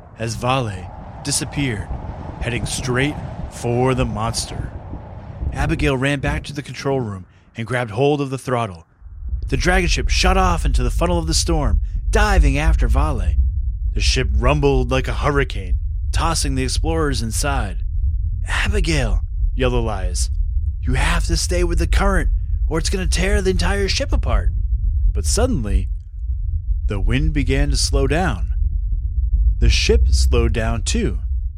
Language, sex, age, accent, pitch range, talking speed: English, male, 30-49, American, 80-135 Hz, 145 wpm